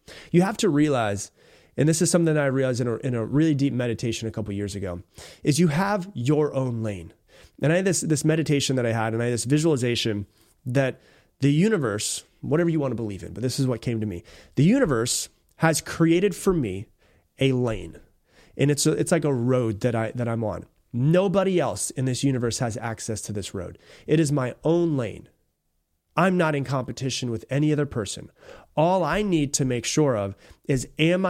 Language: English